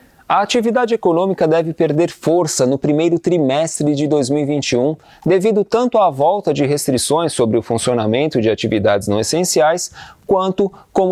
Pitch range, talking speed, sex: 140-180 Hz, 135 wpm, male